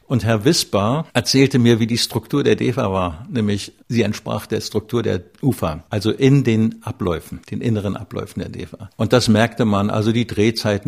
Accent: German